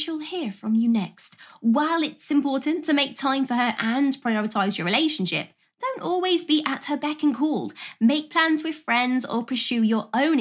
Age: 20-39